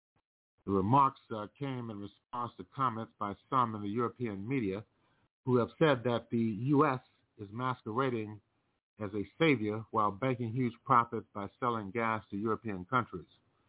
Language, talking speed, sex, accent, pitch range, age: English, 155 wpm, male, American, 105-125 Hz, 50-69